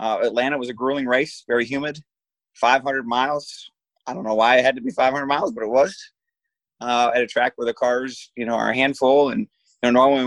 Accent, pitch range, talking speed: American, 115-130 Hz, 215 wpm